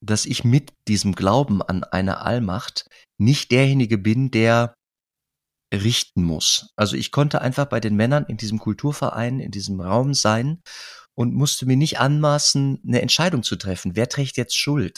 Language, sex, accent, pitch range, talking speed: German, male, German, 105-135 Hz, 165 wpm